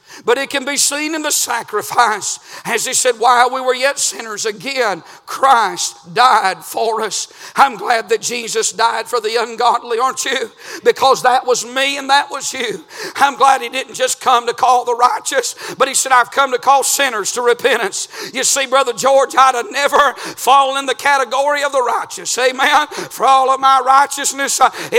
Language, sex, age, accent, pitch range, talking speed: English, male, 50-69, American, 260-300 Hz, 190 wpm